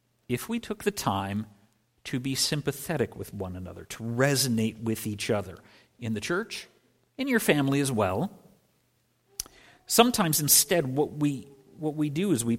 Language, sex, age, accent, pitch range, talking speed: English, male, 50-69, American, 115-155 Hz, 155 wpm